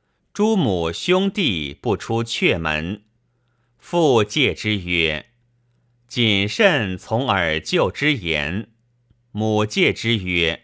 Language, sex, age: Chinese, male, 50-69